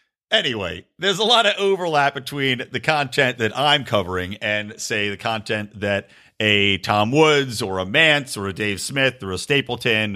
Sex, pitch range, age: male, 100-155 Hz, 40-59